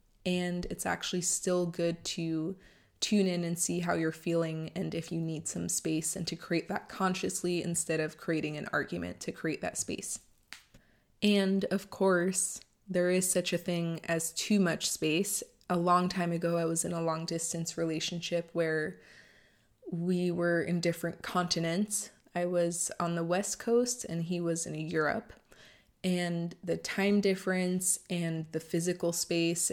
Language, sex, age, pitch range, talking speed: English, female, 20-39, 165-185 Hz, 165 wpm